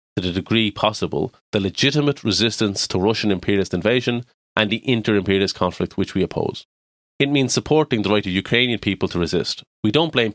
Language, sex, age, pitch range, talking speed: English, male, 30-49, 90-115 Hz, 180 wpm